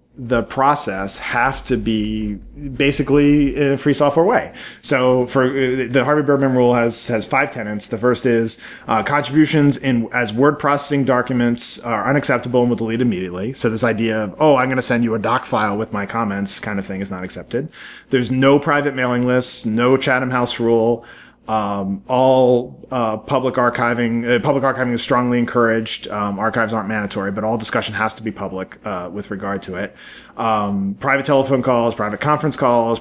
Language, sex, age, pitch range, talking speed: English, male, 30-49, 110-130 Hz, 185 wpm